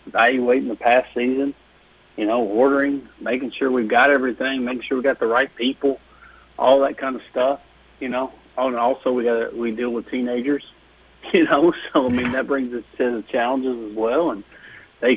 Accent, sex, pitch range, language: American, male, 115-135 Hz, English